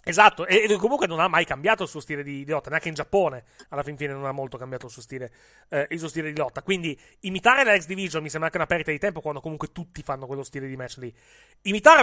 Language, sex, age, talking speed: Italian, male, 30-49, 265 wpm